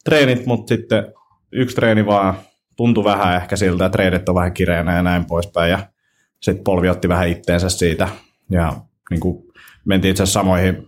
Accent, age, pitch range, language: native, 30-49, 85-100 Hz, Finnish